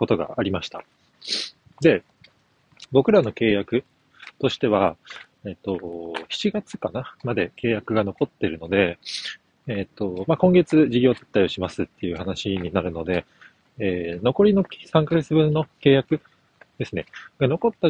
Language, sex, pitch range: Japanese, male, 100-155 Hz